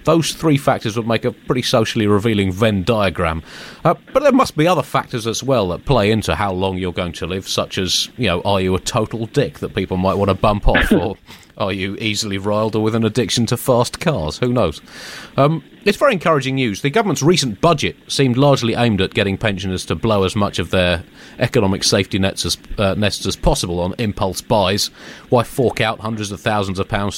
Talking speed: 215 wpm